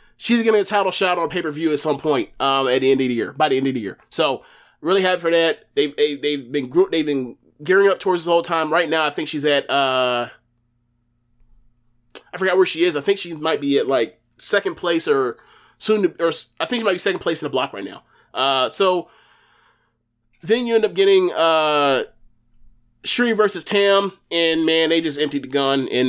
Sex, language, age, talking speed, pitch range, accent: male, English, 20-39, 225 wpm, 135-195 Hz, American